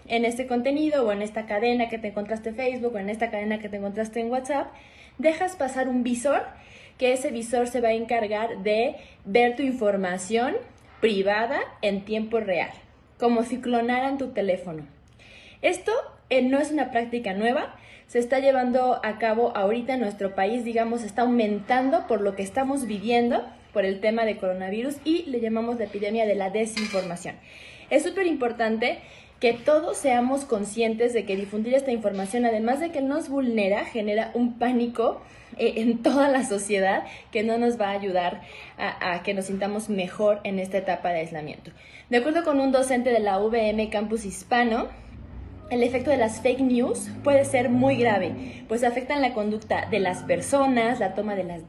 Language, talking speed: Spanish, 180 wpm